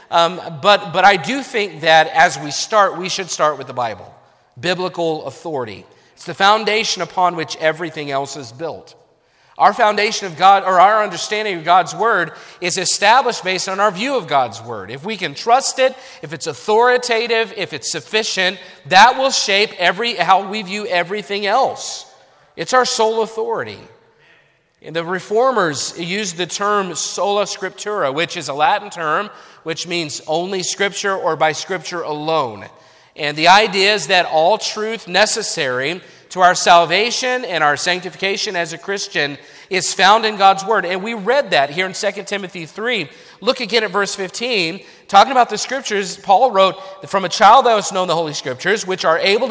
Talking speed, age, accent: 175 wpm, 40-59, American